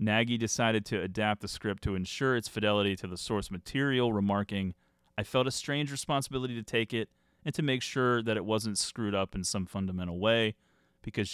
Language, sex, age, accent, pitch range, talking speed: English, male, 30-49, American, 95-120 Hz, 195 wpm